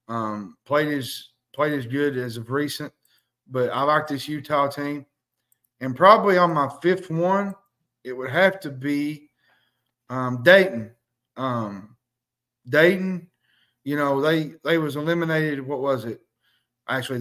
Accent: American